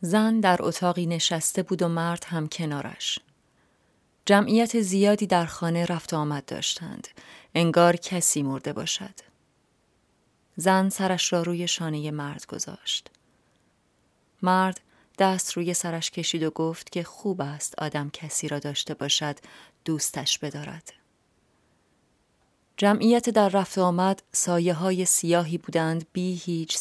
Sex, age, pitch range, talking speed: female, 30-49, 160-190 Hz, 125 wpm